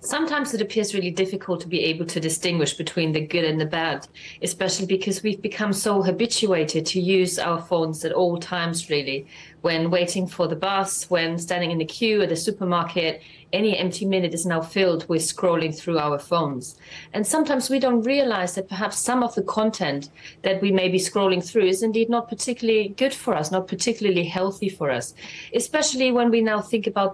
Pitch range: 175-215 Hz